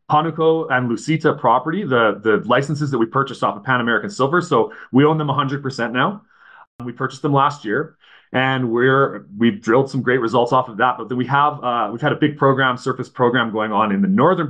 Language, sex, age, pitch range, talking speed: English, male, 30-49, 115-145 Hz, 230 wpm